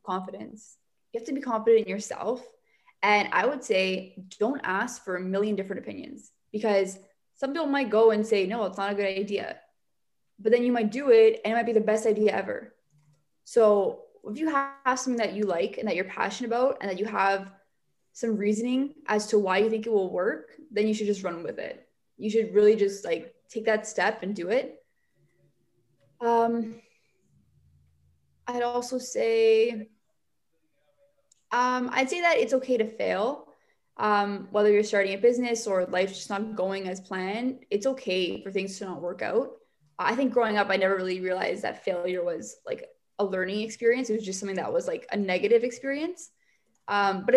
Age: 20-39